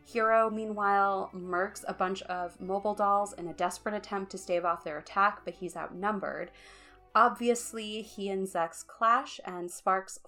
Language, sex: English, female